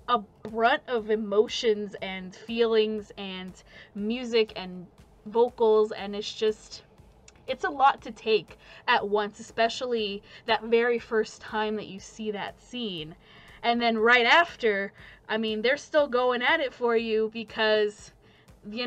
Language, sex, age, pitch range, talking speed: English, female, 20-39, 210-235 Hz, 145 wpm